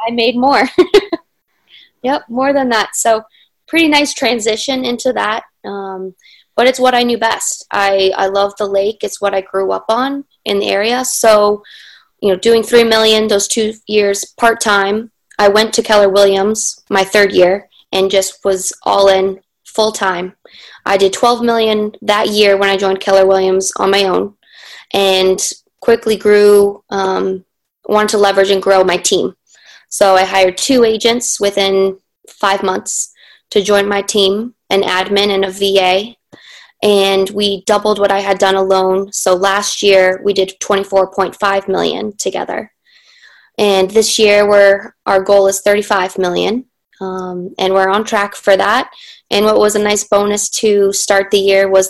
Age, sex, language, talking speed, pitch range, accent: 20-39, female, English, 165 wpm, 195-225 Hz, American